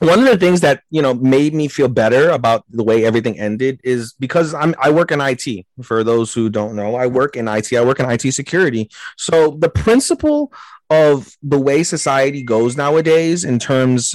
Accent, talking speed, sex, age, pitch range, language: American, 205 wpm, male, 30-49, 115-145 Hz, English